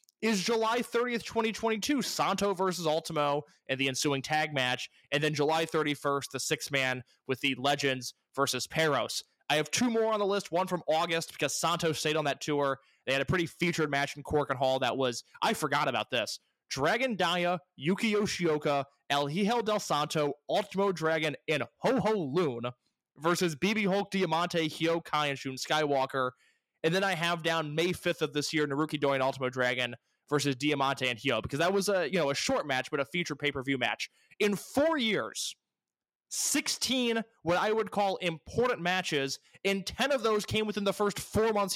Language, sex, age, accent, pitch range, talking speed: English, male, 20-39, American, 140-205 Hz, 185 wpm